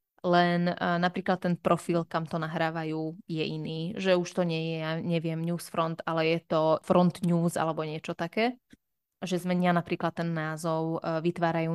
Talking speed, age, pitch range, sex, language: 170 wpm, 20-39, 165-180 Hz, female, Slovak